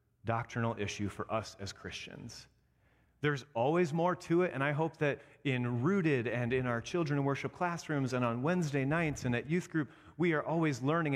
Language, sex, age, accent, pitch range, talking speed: English, male, 30-49, American, 115-155 Hz, 190 wpm